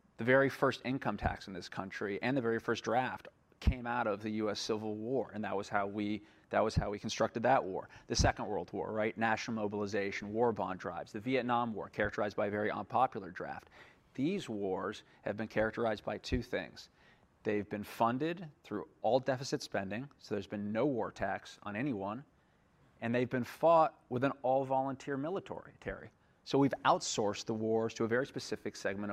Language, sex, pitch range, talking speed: English, male, 105-130 Hz, 190 wpm